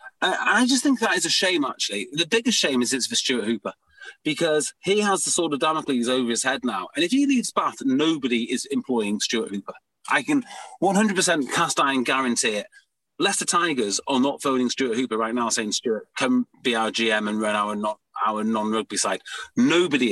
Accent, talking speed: British, 200 wpm